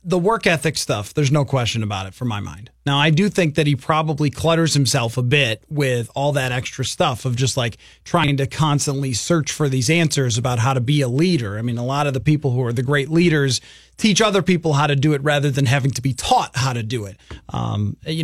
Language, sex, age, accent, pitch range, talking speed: English, male, 30-49, American, 140-190 Hz, 245 wpm